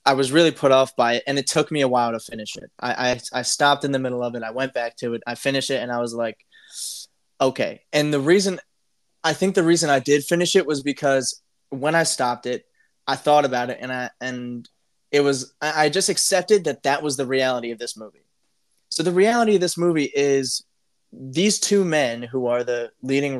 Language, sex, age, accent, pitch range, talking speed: English, male, 20-39, American, 125-155 Hz, 230 wpm